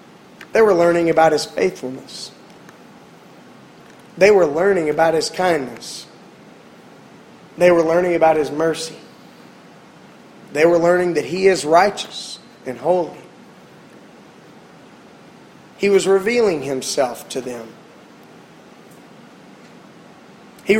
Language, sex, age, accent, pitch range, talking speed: English, male, 30-49, American, 155-195 Hz, 100 wpm